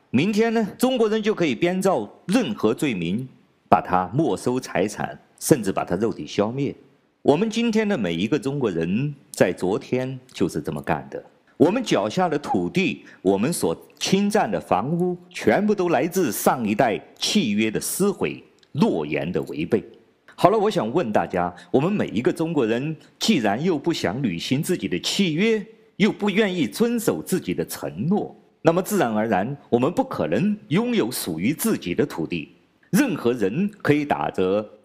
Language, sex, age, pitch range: Chinese, male, 50-69, 135-210 Hz